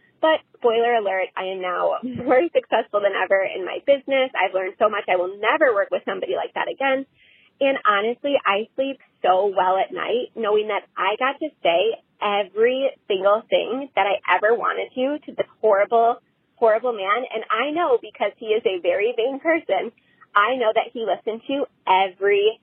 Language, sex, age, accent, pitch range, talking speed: English, female, 20-39, American, 205-290 Hz, 185 wpm